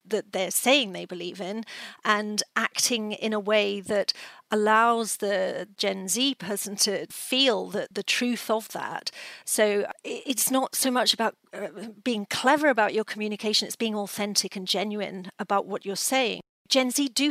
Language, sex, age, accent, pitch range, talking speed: English, female, 40-59, British, 195-240 Hz, 165 wpm